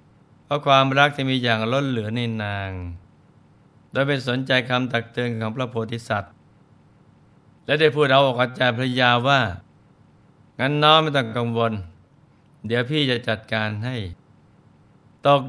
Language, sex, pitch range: Thai, male, 115-135 Hz